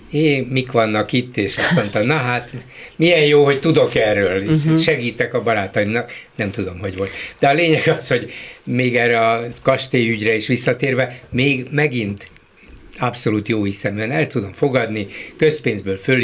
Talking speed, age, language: 155 wpm, 60-79, Hungarian